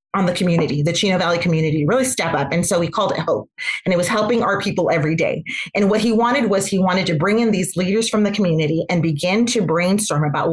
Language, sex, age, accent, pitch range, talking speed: English, female, 30-49, American, 180-245 Hz, 250 wpm